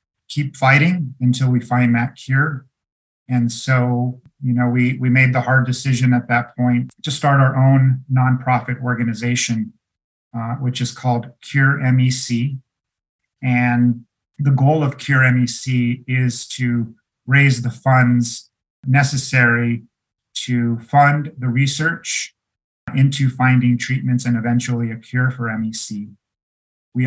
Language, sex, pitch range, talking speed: English, male, 120-135 Hz, 130 wpm